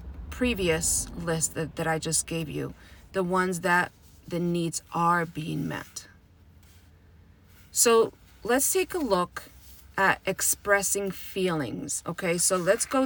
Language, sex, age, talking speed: English, female, 30-49, 130 wpm